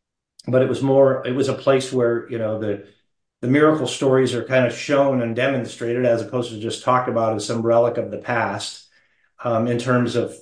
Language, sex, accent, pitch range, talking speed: English, male, American, 110-125 Hz, 215 wpm